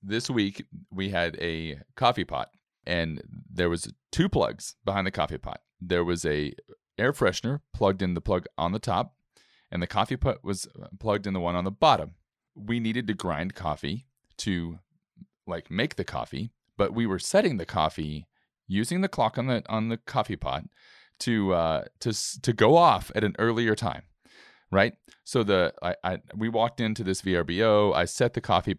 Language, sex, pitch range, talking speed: English, male, 90-120 Hz, 185 wpm